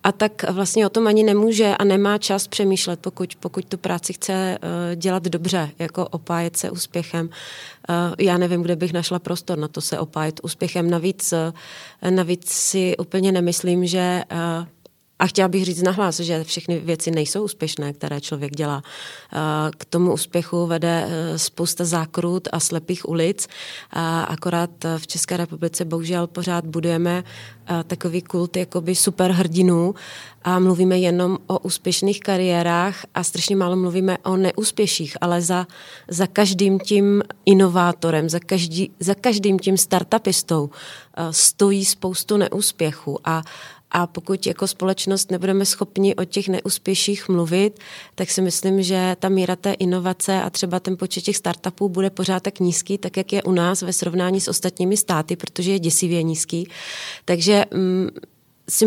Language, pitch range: Czech, 175-195 Hz